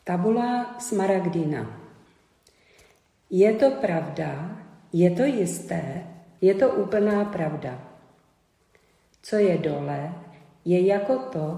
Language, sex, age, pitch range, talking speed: Czech, female, 40-59, 160-190 Hz, 95 wpm